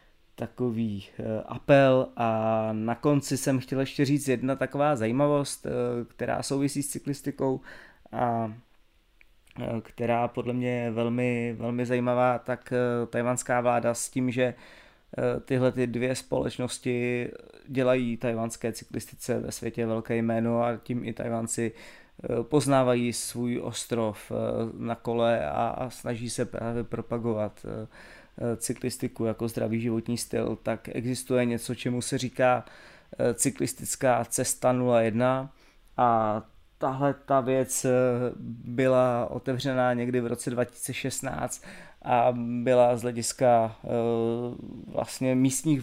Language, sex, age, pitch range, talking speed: Czech, male, 20-39, 115-125 Hz, 110 wpm